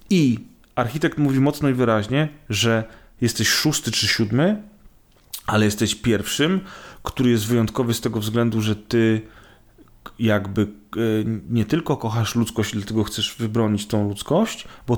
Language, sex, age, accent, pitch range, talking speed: Polish, male, 30-49, native, 115-145 Hz, 130 wpm